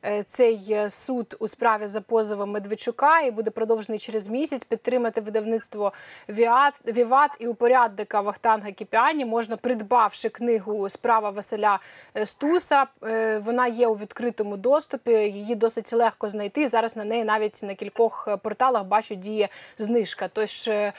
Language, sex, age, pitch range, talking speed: Ukrainian, female, 20-39, 210-250 Hz, 130 wpm